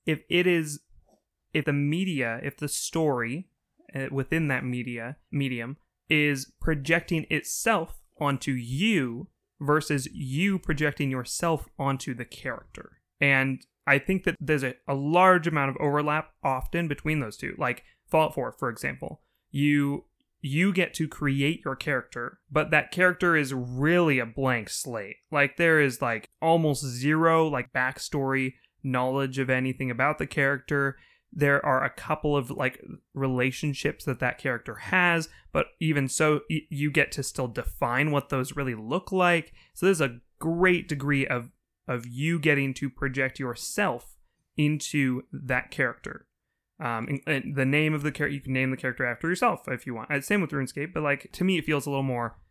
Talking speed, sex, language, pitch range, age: 165 wpm, male, English, 130-155 Hz, 20-39